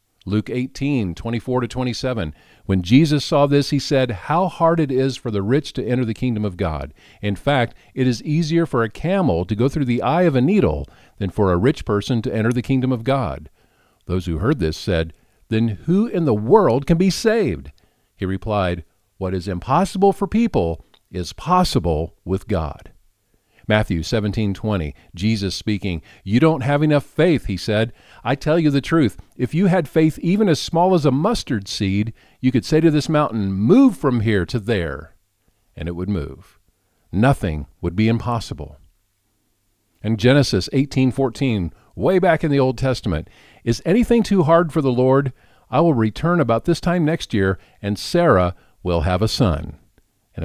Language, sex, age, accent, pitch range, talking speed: English, male, 50-69, American, 95-140 Hz, 180 wpm